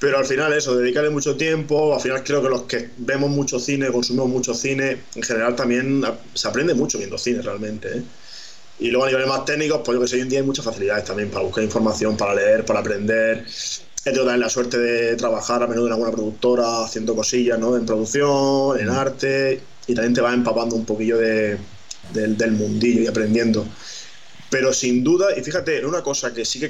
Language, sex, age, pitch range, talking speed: Spanish, male, 20-39, 115-135 Hz, 205 wpm